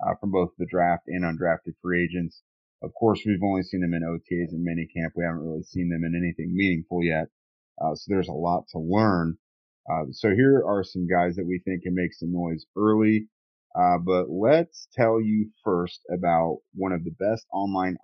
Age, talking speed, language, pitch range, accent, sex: 30-49, 205 wpm, English, 85-105 Hz, American, male